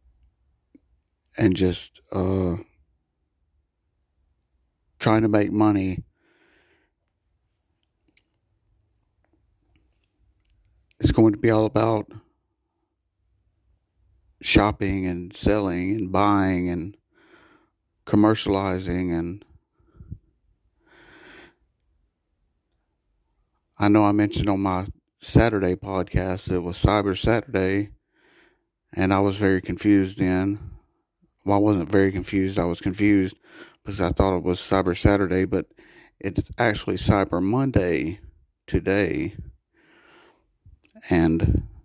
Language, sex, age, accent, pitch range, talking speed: English, male, 50-69, American, 85-105 Hz, 90 wpm